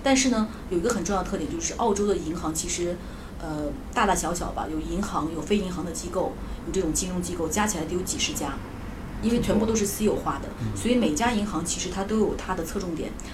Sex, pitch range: female, 180-240 Hz